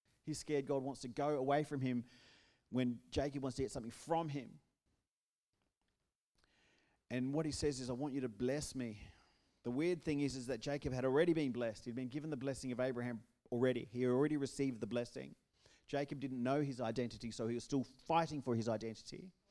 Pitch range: 135-170 Hz